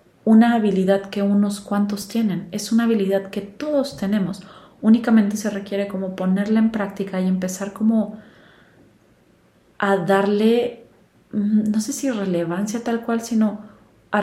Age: 30-49